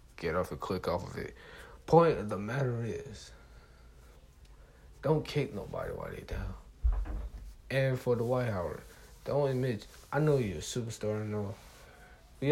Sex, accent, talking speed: male, American, 160 wpm